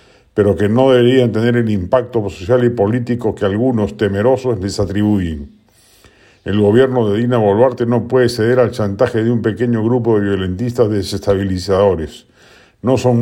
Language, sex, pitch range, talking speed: Spanish, male, 105-125 Hz, 155 wpm